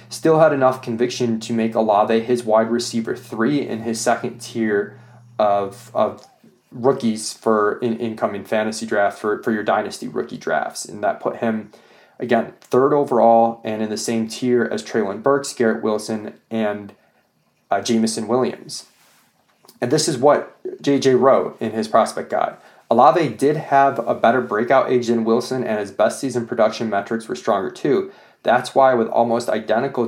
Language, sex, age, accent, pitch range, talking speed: English, male, 20-39, American, 110-125 Hz, 165 wpm